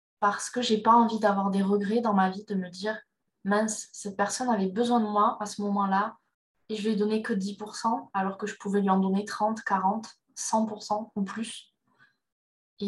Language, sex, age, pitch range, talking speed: French, female, 20-39, 195-225 Hz, 215 wpm